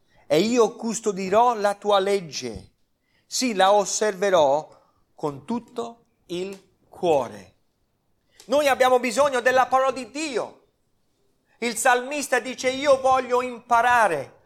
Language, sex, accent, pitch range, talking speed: Italian, male, native, 165-230 Hz, 110 wpm